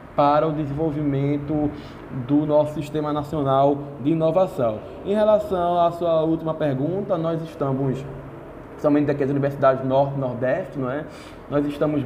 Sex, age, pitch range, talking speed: male, 20-39, 130-160 Hz, 125 wpm